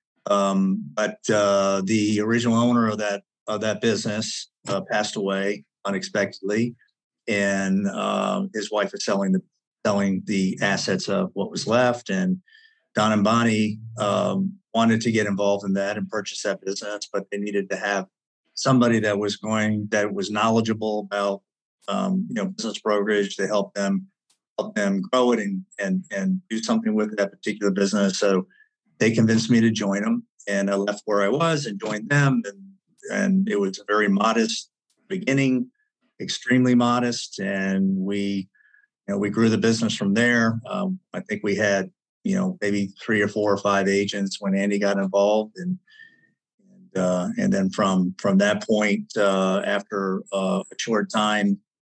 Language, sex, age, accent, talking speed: English, male, 50-69, American, 170 wpm